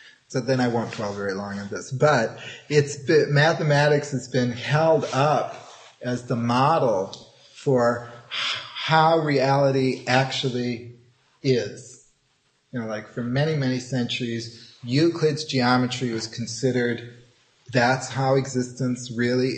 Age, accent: 30-49, American